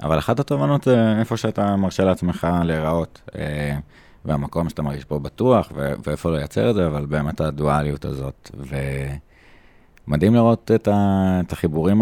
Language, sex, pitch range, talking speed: Hebrew, male, 75-90 Hz, 150 wpm